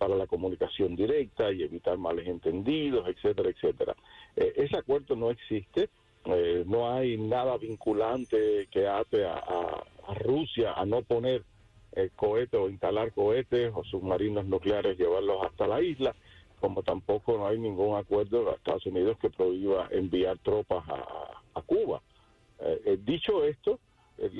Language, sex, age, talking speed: Spanish, male, 50-69, 150 wpm